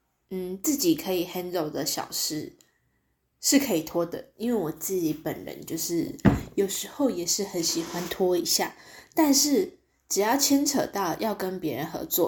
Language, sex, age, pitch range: Chinese, female, 20-39, 170-280 Hz